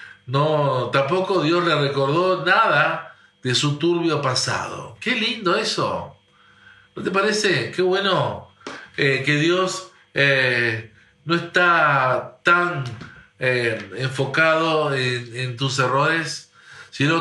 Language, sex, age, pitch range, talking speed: Spanish, male, 50-69, 125-165 Hz, 110 wpm